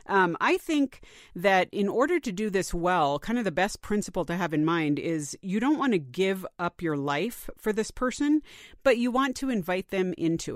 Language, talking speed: English, 215 wpm